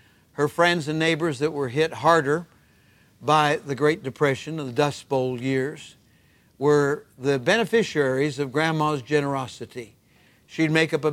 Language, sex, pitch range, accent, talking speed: English, male, 140-170 Hz, American, 145 wpm